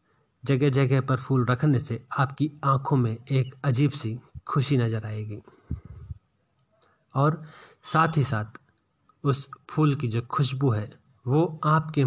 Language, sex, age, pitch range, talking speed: Hindi, male, 30-49, 125-150 Hz, 135 wpm